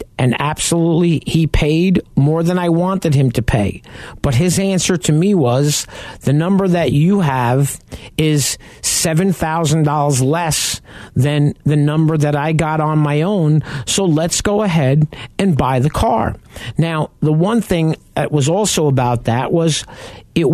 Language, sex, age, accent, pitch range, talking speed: English, male, 50-69, American, 120-160 Hz, 155 wpm